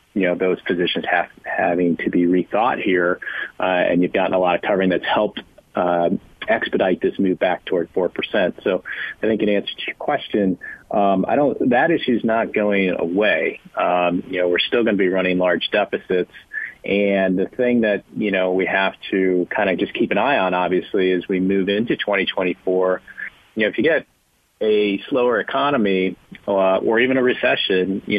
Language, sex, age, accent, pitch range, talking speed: English, male, 40-59, American, 90-100 Hz, 195 wpm